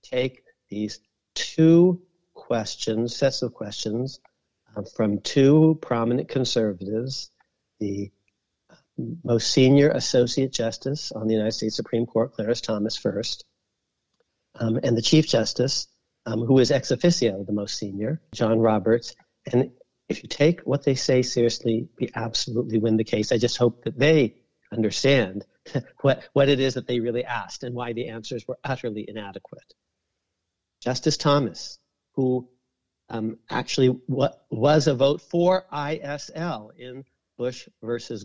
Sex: male